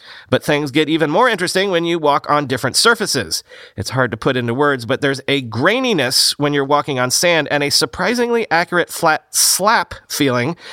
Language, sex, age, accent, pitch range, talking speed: English, male, 30-49, American, 130-175 Hz, 190 wpm